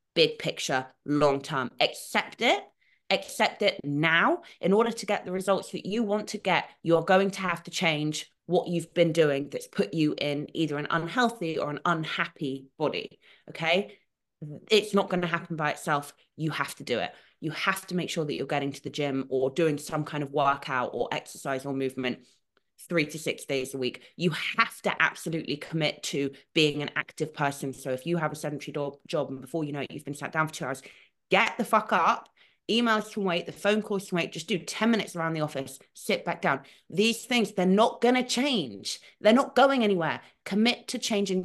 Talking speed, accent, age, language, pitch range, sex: 210 wpm, British, 20-39, English, 145-200 Hz, female